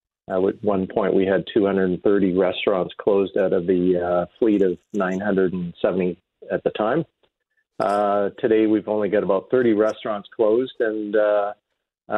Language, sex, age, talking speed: English, male, 40-59, 150 wpm